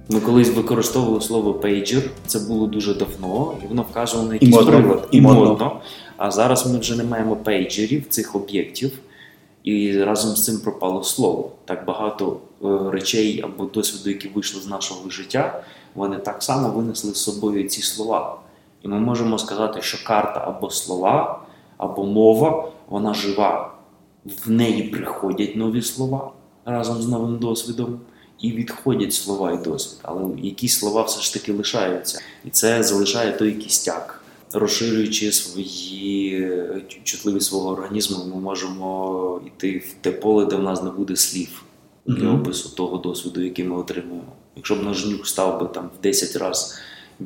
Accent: native